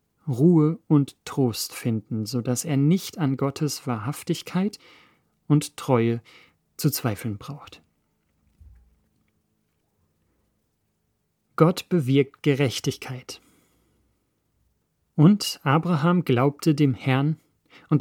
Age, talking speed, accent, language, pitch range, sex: 40-59, 85 wpm, German, German, 125-160 Hz, male